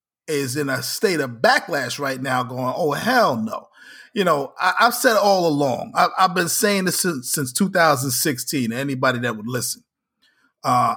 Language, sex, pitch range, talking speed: English, male, 140-210 Hz, 180 wpm